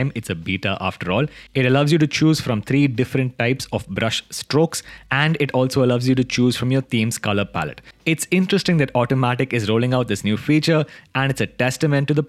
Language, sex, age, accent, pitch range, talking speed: English, male, 20-39, Indian, 110-140 Hz, 220 wpm